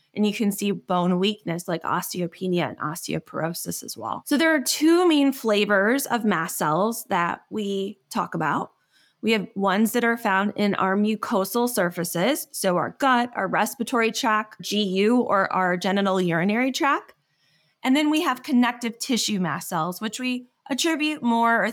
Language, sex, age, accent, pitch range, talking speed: English, female, 20-39, American, 190-250 Hz, 165 wpm